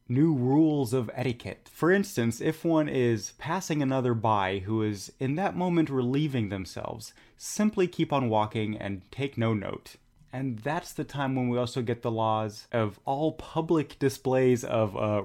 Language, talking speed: English, 170 wpm